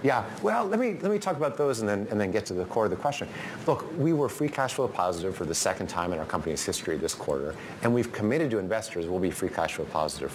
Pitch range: 95-155 Hz